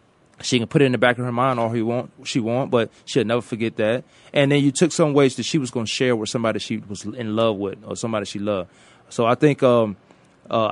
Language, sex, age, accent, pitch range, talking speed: English, male, 20-39, American, 105-135 Hz, 270 wpm